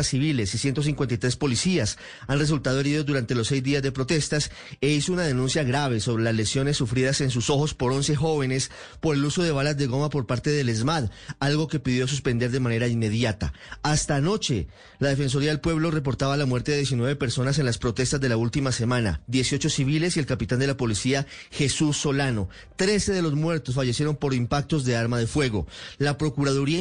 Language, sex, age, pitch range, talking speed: Spanish, male, 30-49, 125-150 Hz, 195 wpm